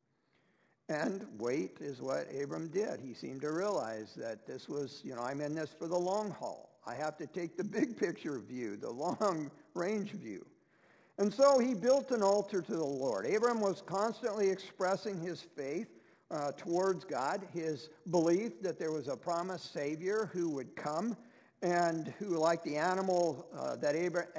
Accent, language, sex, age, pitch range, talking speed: American, English, male, 50-69, 155-210 Hz, 170 wpm